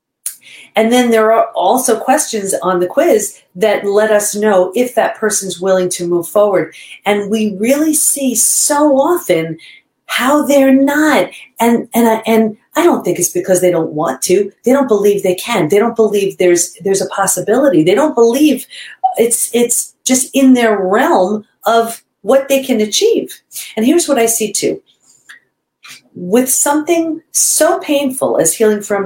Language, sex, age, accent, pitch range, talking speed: English, female, 40-59, American, 190-260 Hz, 165 wpm